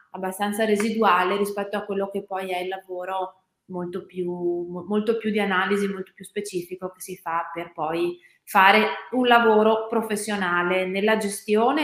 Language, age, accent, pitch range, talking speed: Italian, 20-39, native, 190-230 Hz, 145 wpm